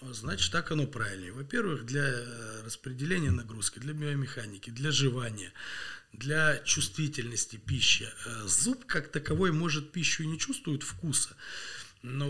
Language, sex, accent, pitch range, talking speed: Russian, male, native, 120-150 Hz, 120 wpm